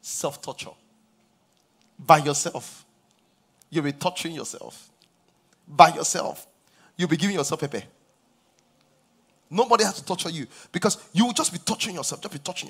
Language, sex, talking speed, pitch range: English, male, 145 wpm, 125-180 Hz